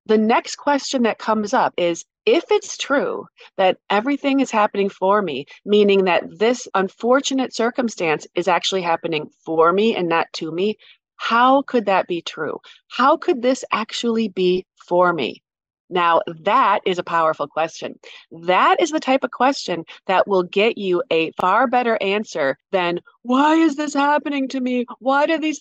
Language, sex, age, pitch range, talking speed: English, female, 30-49, 185-260 Hz, 170 wpm